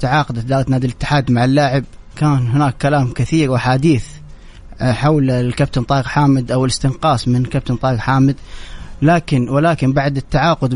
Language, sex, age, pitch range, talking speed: English, male, 30-49, 125-145 Hz, 140 wpm